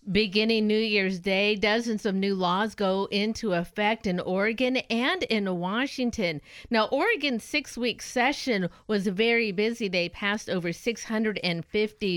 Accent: American